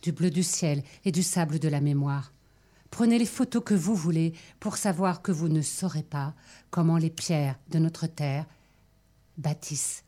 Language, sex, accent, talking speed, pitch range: French, female, French, 180 wpm, 150-190 Hz